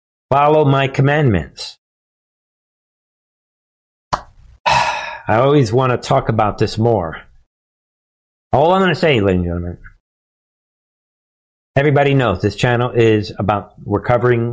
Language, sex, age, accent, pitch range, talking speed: English, male, 50-69, American, 90-135 Hz, 105 wpm